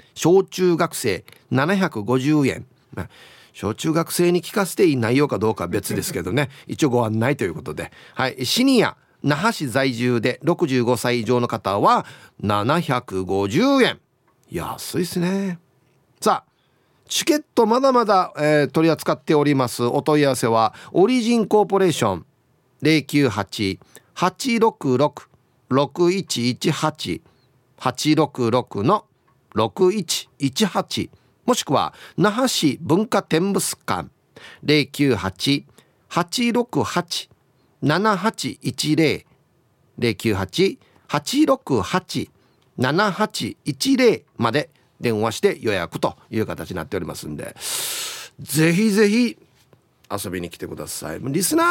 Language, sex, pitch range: Japanese, male, 125-200 Hz